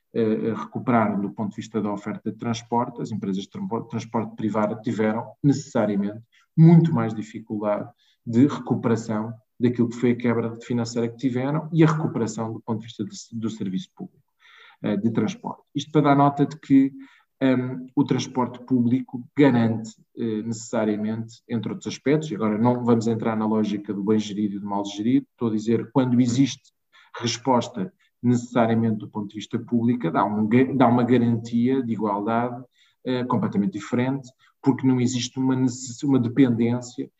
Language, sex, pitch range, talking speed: Portuguese, male, 115-135 Hz, 160 wpm